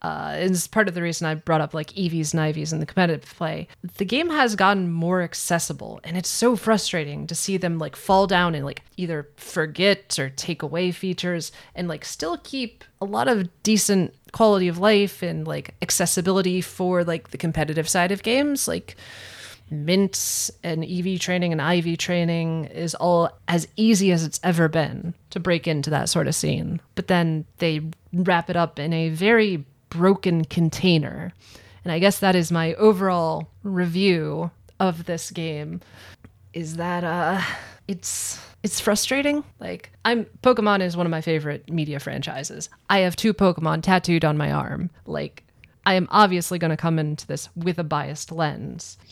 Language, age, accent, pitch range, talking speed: English, 30-49, American, 160-190 Hz, 175 wpm